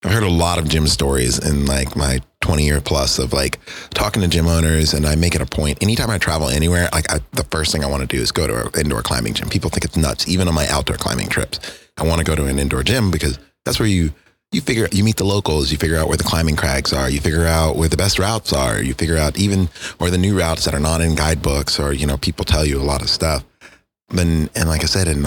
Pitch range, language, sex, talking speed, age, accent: 75-90 Hz, English, male, 285 wpm, 30-49, American